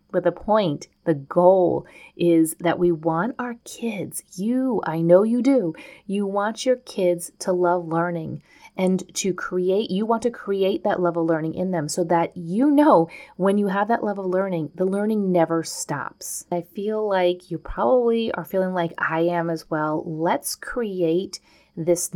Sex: female